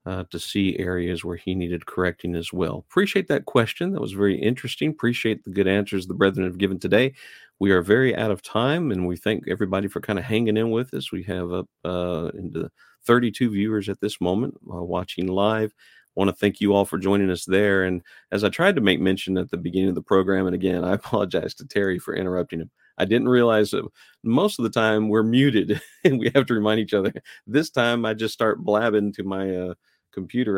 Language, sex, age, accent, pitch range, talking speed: English, male, 40-59, American, 95-115 Hz, 230 wpm